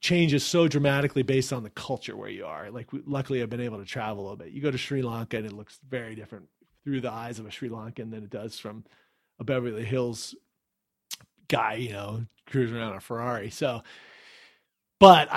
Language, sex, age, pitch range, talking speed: English, male, 40-59, 120-150 Hz, 205 wpm